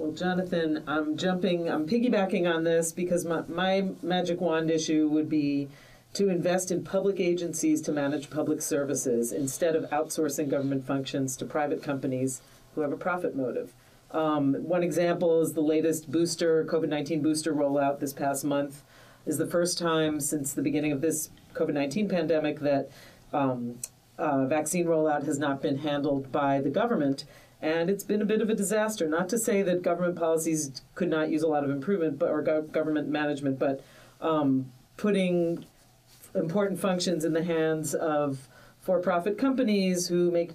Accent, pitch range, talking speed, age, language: American, 145-175 Hz, 165 wpm, 40-59, English